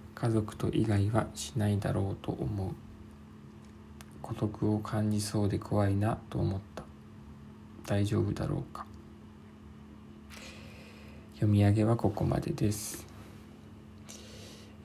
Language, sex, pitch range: Japanese, male, 100-115 Hz